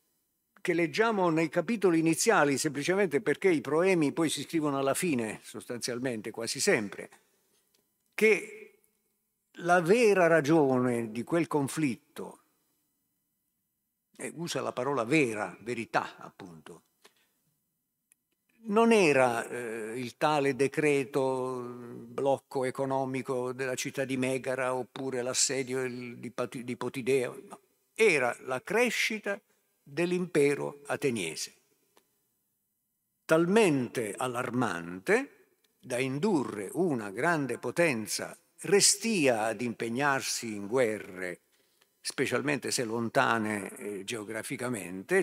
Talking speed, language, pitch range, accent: 90 wpm, Italian, 125-175 Hz, native